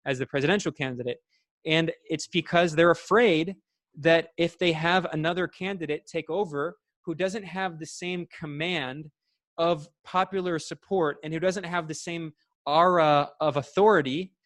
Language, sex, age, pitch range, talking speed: English, male, 20-39, 150-180 Hz, 145 wpm